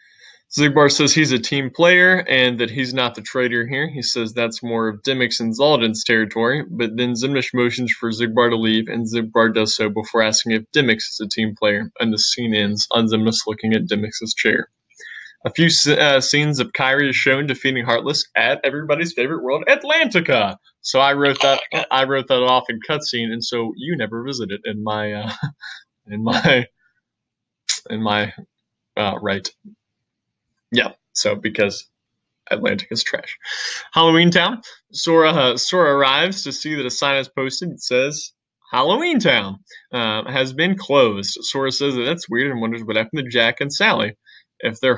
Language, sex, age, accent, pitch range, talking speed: English, male, 20-39, American, 115-145 Hz, 180 wpm